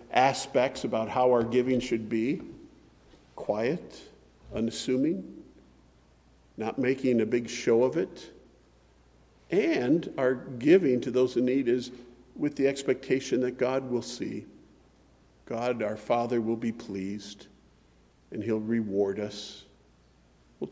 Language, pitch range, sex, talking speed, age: English, 105-130 Hz, male, 120 wpm, 50-69